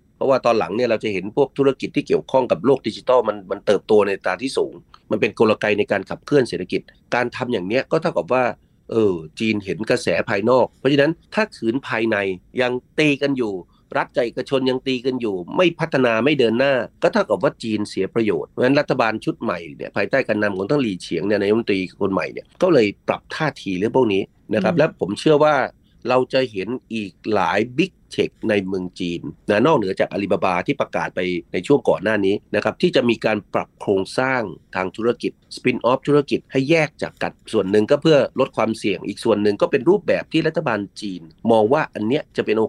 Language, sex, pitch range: Thai, male, 100-145 Hz